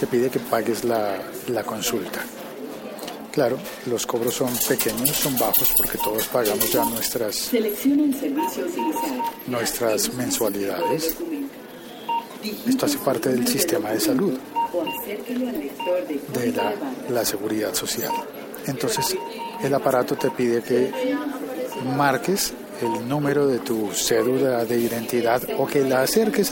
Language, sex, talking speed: Spanish, male, 115 wpm